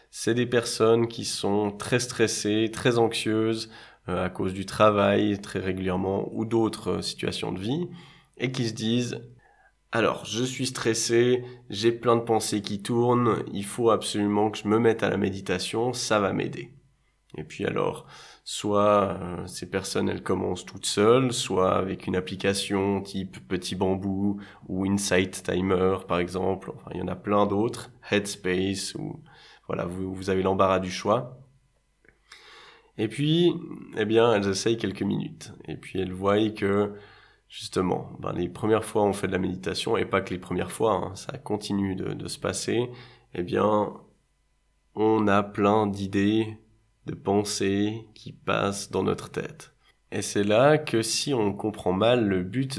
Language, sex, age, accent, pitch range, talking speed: French, male, 20-39, French, 100-115 Hz, 165 wpm